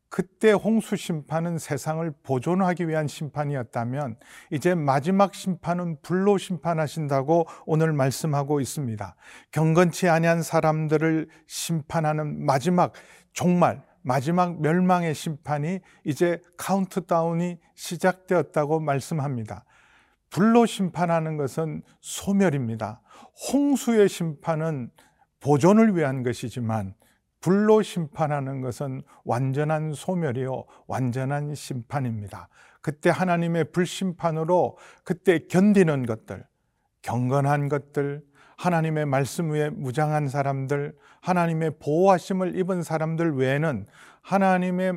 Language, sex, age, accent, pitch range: Korean, male, 40-59, native, 140-180 Hz